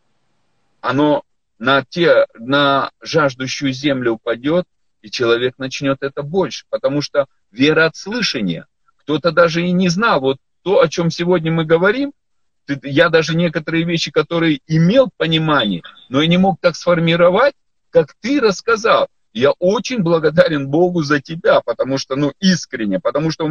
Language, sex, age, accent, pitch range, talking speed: Russian, male, 40-59, native, 145-195 Hz, 150 wpm